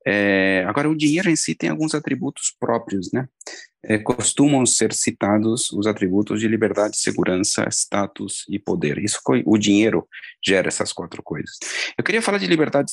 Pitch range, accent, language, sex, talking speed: 100-140 Hz, Brazilian, Portuguese, male, 165 wpm